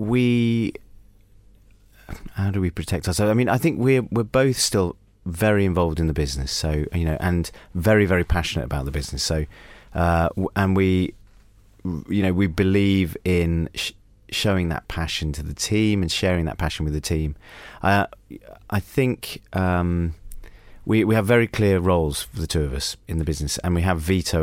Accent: British